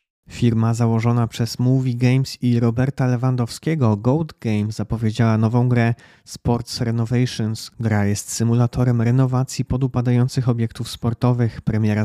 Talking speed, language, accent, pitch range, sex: 115 wpm, Polish, native, 115-125 Hz, male